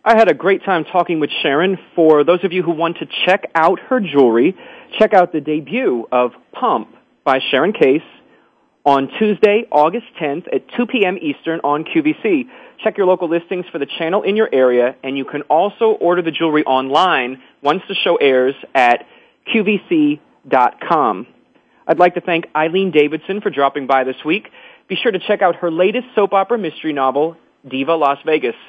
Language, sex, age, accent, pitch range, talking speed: English, male, 40-59, American, 145-195 Hz, 180 wpm